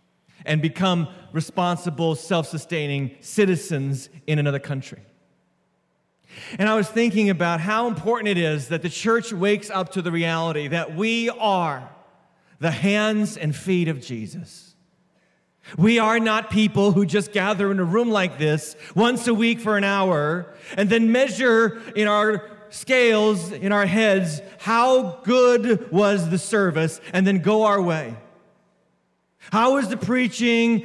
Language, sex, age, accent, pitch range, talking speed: English, male, 40-59, American, 180-245 Hz, 145 wpm